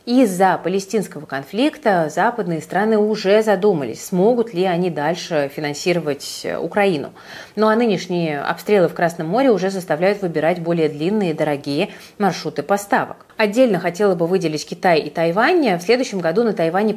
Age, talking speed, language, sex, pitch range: 30-49, 145 wpm, Russian, female, 160-215 Hz